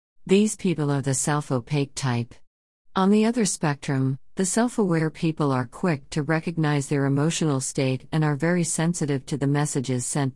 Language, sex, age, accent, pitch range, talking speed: English, female, 50-69, American, 135-165 Hz, 160 wpm